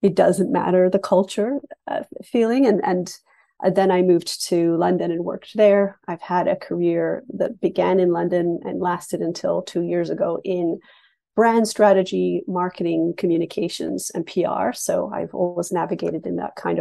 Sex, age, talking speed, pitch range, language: female, 30-49, 160 wpm, 175-200 Hz, English